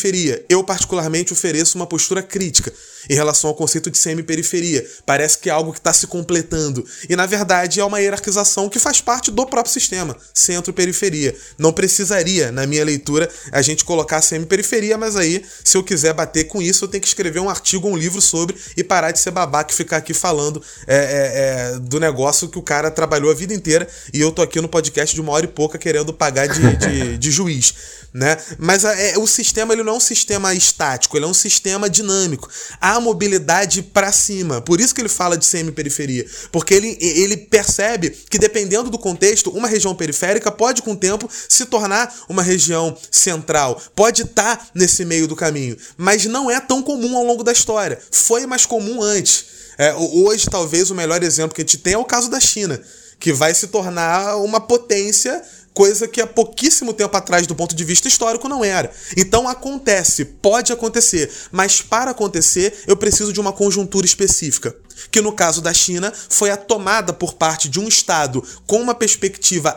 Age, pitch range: 20-39, 160-210 Hz